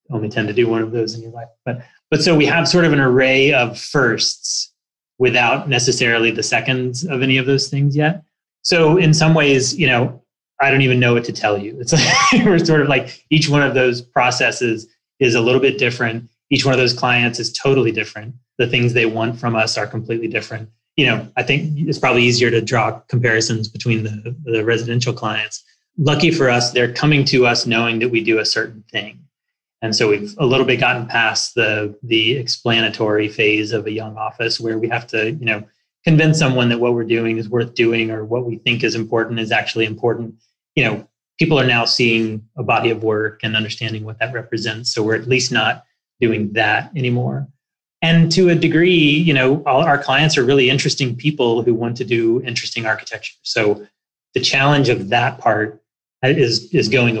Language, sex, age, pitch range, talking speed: English, male, 30-49, 115-135 Hz, 210 wpm